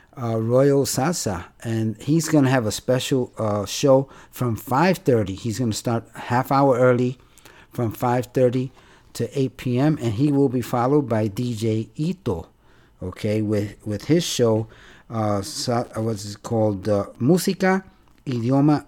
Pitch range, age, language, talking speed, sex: 110-140 Hz, 50-69, Spanish, 155 wpm, male